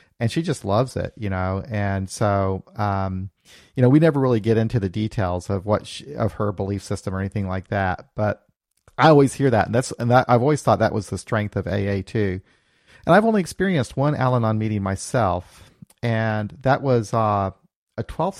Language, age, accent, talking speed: English, 40-59, American, 200 wpm